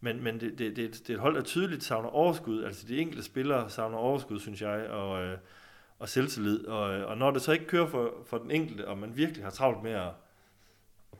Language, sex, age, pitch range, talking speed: Danish, male, 30-49, 100-130 Hz, 240 wpm